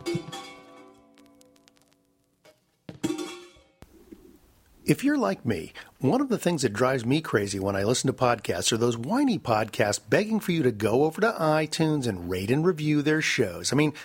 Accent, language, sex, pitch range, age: American, English, male, 120-160 Hz, 50-69